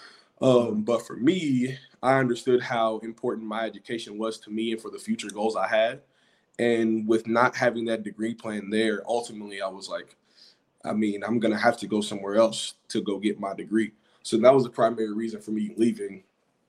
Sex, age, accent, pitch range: male, 20-39, American, 110-120 Hz